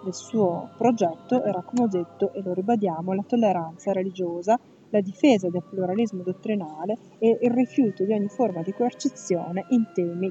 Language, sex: Italian, female